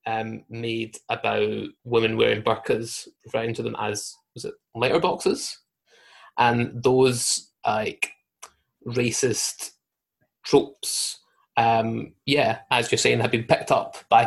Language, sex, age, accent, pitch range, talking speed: English, male, 20-39, British, 120-175 Hz, 125 wpm